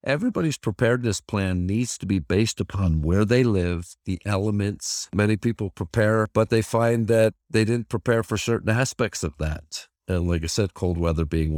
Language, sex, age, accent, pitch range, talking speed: English, male, 50-69, American, 85-110 Hz, 180 wpm